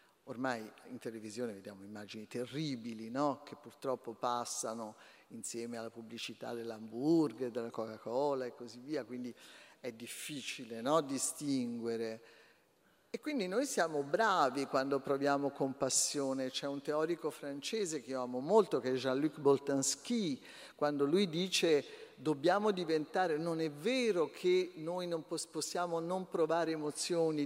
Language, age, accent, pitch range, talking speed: Italian, 50-69, native, 130-180 Hz, 130 wpm